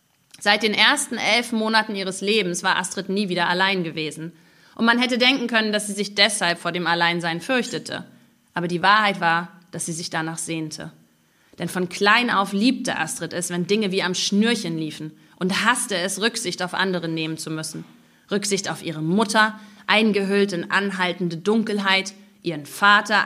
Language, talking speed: German, 175 wpm